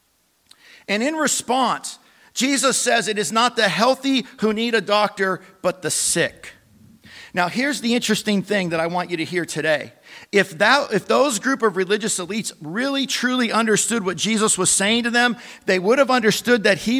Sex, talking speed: male, 180 wpm